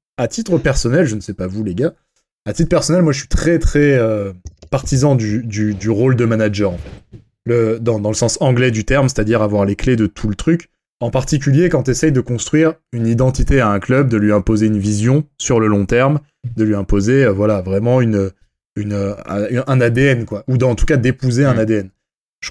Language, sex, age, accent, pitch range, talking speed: French, male, 20-39, French, 110-140 Hz, 225 wpm